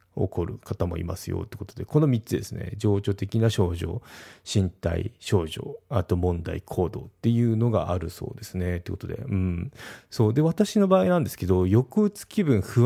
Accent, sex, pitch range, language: native, male, 90-120 Hz, Japanese